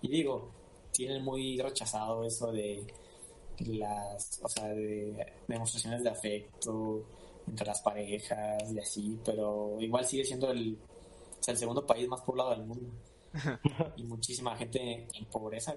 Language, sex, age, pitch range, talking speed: Spanish, male, 20-39, 110-130 Hz, 145 wpm